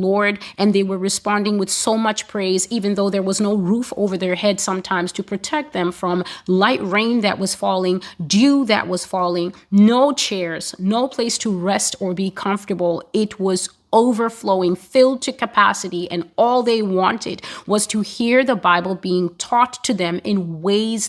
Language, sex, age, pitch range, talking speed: English, female, 30-49, 180-210 Hz, 175 wpm